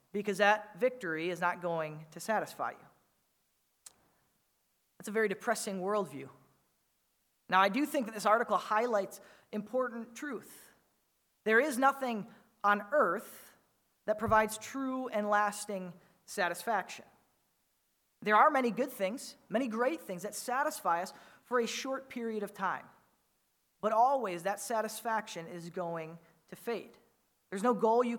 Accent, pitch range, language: American, 195-235 Hz, English